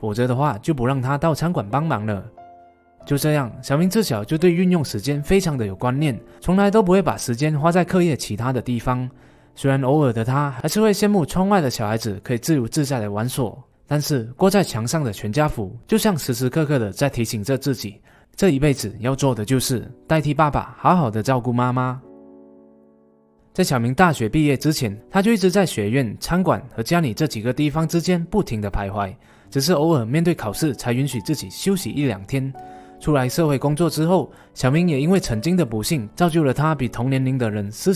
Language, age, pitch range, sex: Chinese, 20-39, 110-160 Hz, male